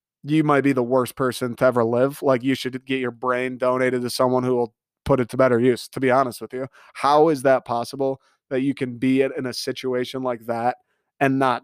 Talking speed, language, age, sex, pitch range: 230 wpm, English, 20-39, male, 125-150 Hz